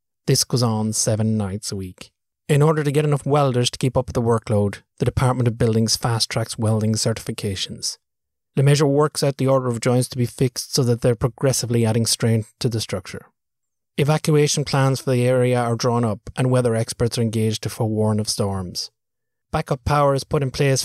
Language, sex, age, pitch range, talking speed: English, male, 30-49, 110-135 Hz, 200 wpm